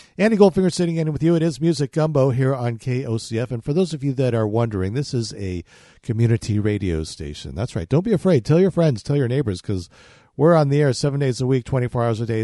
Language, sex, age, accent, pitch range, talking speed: English, male, 50-69, American, 110-145 Hz, 245 wpm